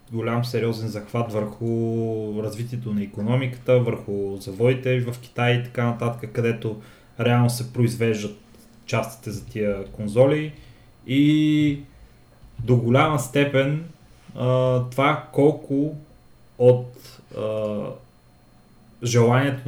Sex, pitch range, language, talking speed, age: male, 115-130 Hz, Bulgarian, 90 wpm, 20-39